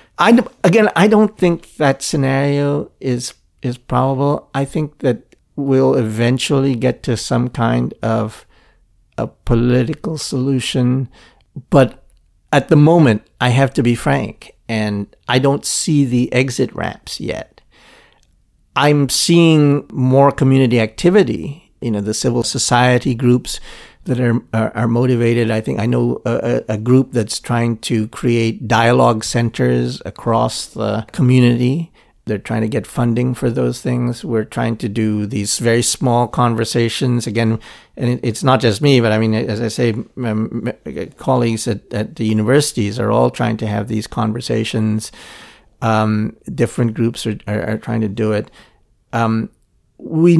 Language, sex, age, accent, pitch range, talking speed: English, male, 50-69, American, 110-135 Hz, 145 wpm